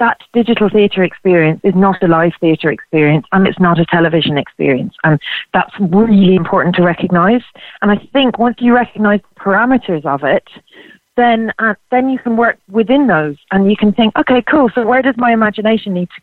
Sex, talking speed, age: female, 195 wpm, 30-49